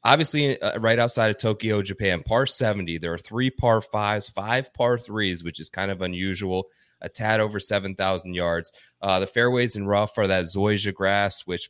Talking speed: 190 wpm